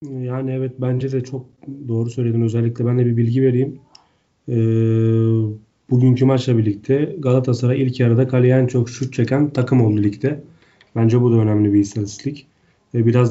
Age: 30-49